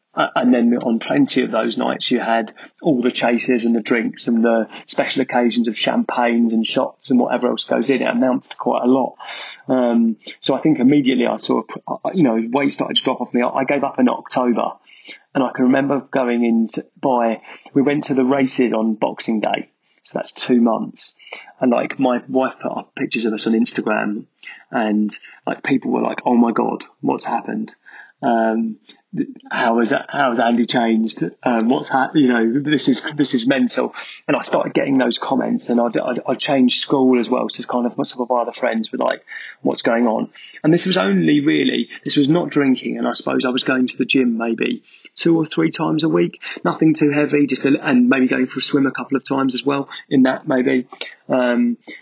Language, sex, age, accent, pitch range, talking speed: English, male, 30-49, British, 120-145 Hz, 215 wpm